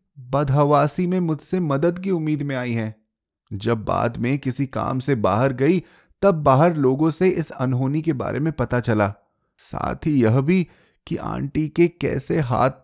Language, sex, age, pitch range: Hindi, male, 20-39, 130-180 Hz